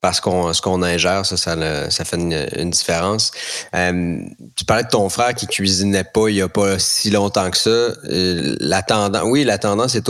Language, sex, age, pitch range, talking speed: French, male, 30-49, 90-115 Hz, 220 wpm